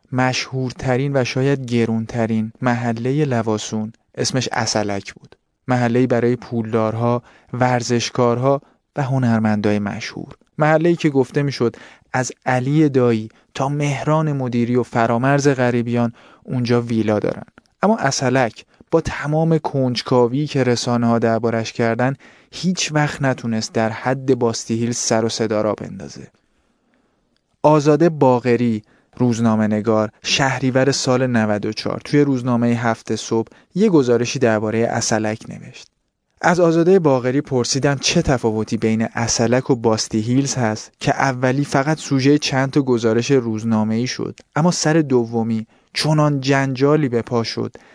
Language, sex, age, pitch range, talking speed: Persian, male, 30-49, 115-135 Hz, 125 wpm